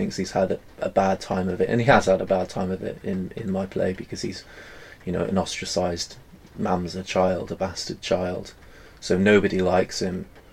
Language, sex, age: English, male, 20-39